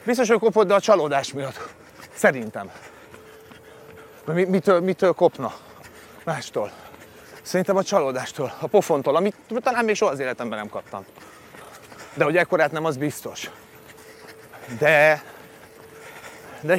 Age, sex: 30-49, male